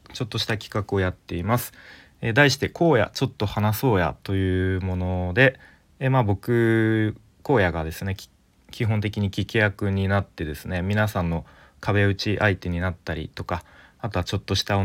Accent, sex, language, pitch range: native, male, Japanese, 85-105 Hz